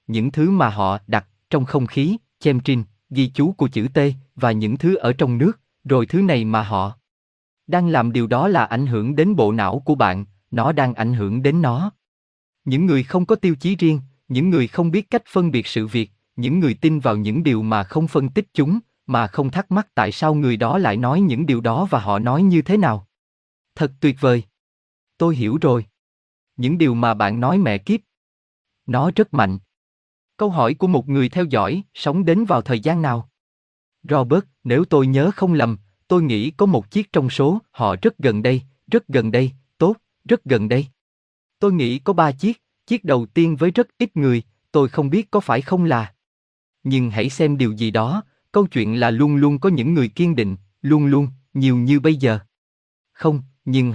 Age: 20-39